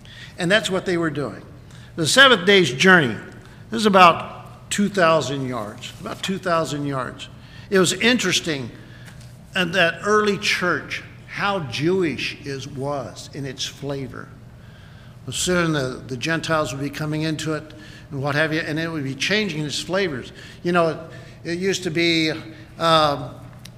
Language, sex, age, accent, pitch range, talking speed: English, male, 50-69, American, 130-175 Hz, 155 wpm